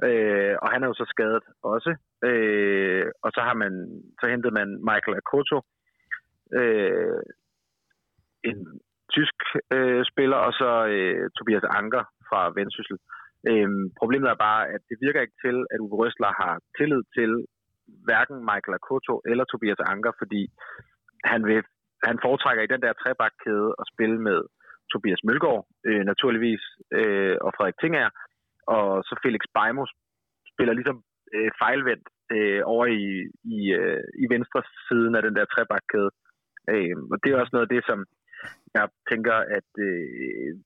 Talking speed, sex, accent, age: 140 wpm, male, native, 30-49